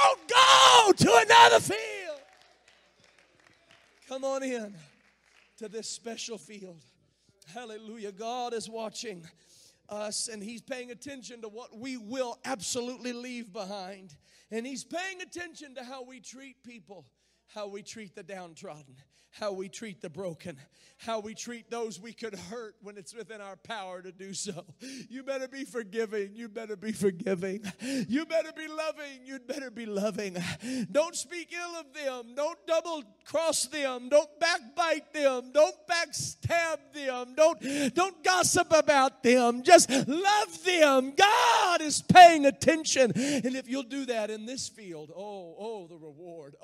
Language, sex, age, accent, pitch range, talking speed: English, male, 40-59, American, 210-295 Hz, 150 wpm